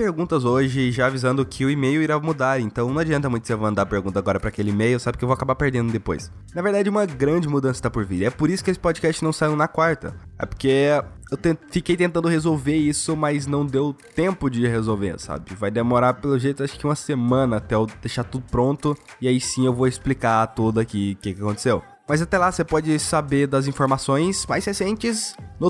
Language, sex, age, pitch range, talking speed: Portuguese, male, 20-39, 125-170 Hz, 225 wpm